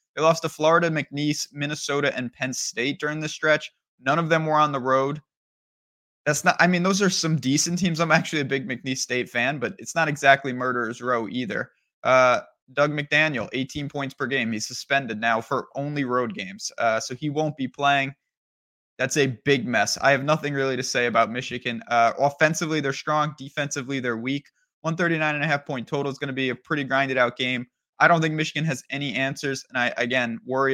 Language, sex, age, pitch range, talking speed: English, male, 20-39, 125-150 Hz, 200 wpm